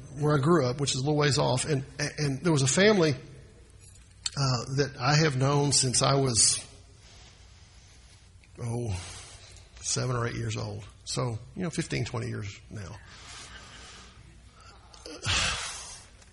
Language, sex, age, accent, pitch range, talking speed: English, male, 50-69, American, 100-140 Hz, 140 wpm